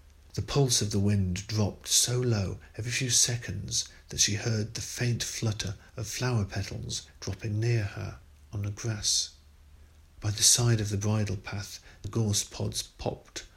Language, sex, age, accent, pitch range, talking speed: English, male, 50-69, British, 100-115 Hz, 165 wpm